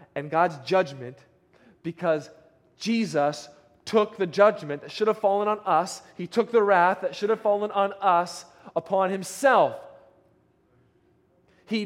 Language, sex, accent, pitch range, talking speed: English, male, American, 155-200 Hz, 135 wpm